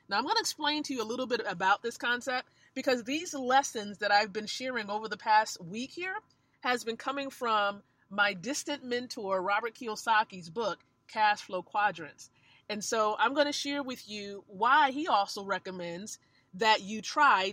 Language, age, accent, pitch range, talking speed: English, 30-49, American, 205-280 Hz, 180 wpm